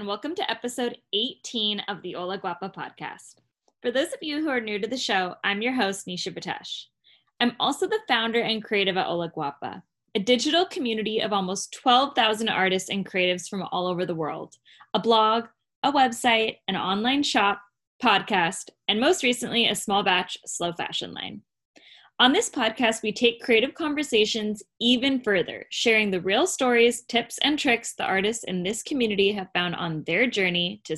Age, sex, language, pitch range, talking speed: 10-29, female, English, 185-245 Hz, 180 wpm